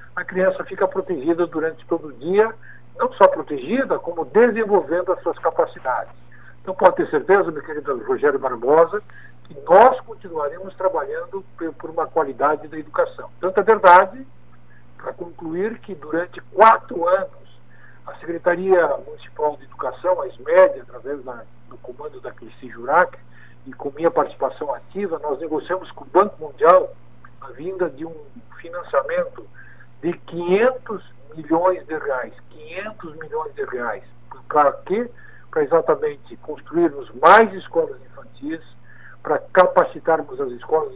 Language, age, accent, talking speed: Portuguese, 60-79, Brazilian, 135 wpm